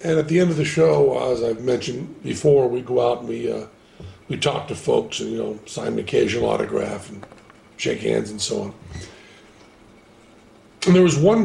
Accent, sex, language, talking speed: American, male, English, 200 wpm